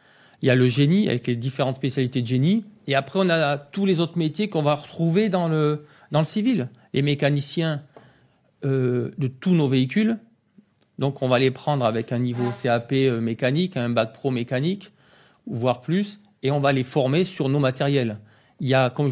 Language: French